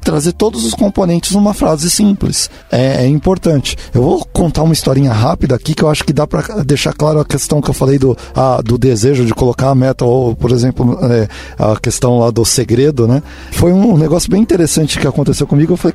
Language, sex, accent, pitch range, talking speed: Portuguese, male, Brazilian, 125-180 Hz, 220 wpm